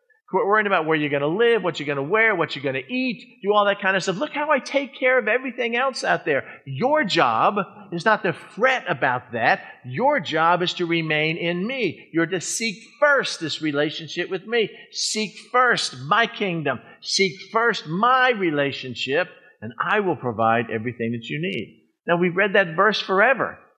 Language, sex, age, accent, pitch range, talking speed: English, male, 50-69, American, 130-205 Hz, 200 wpm